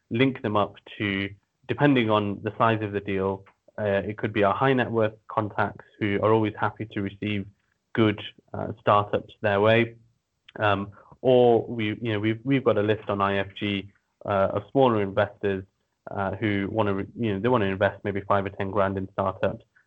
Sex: male